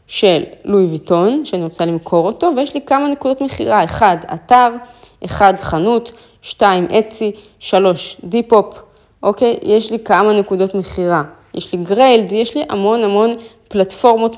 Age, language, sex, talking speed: 20-39, Hebrew, female, 140 wpm